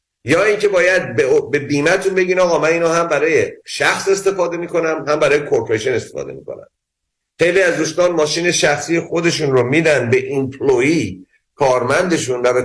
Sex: male